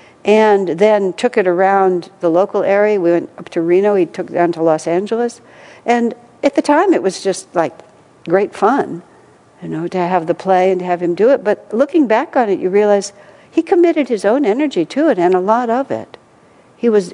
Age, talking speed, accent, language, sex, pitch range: 60-79, 220 wpm, American, English, female, 180-245 Hz